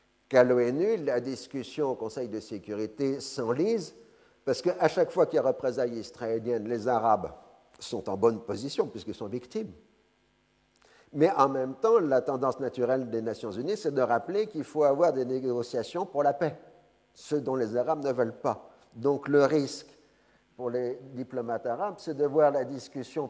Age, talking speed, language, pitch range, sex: 50-69, 175 wpm, French, 120-145 Hz, male